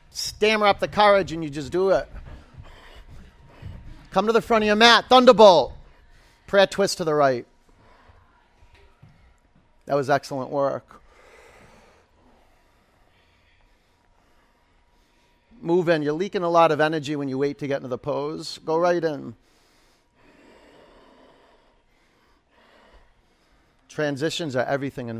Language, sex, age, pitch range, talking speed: English, male, 40-59, 140-200 Hz, 115 wpm